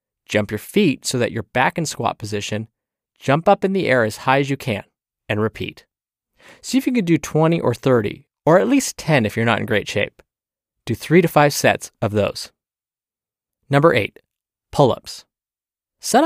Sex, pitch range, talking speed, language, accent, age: male, 110-155 Hz, 190 wpm, English, American, 20-39